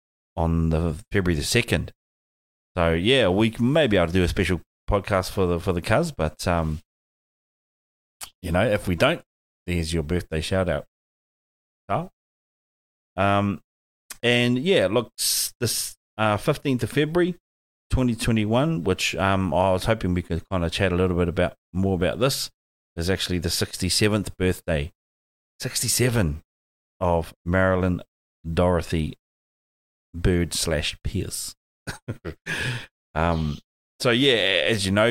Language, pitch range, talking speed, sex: English, 80-100 Hz, 135 wpm, male